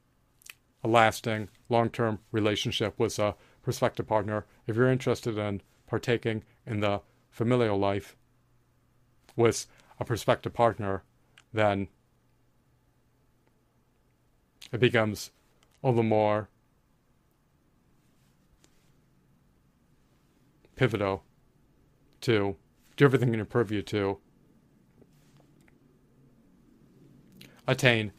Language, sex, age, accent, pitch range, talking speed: English, male, 40-59, American, 105-125 Hz, 80 wpm